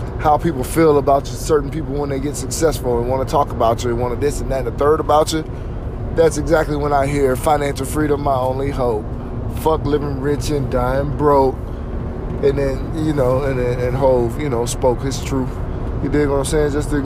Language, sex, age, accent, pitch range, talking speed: English, male, 20-39, American, 120-140 Hz, 230 wpm